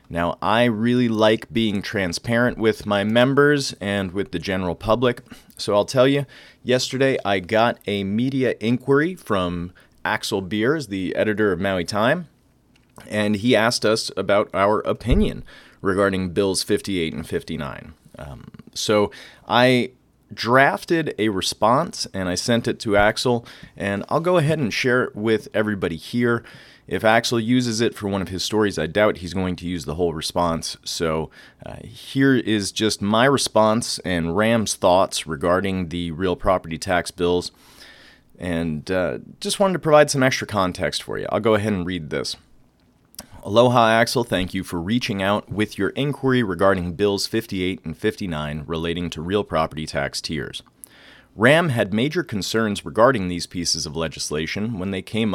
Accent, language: American, English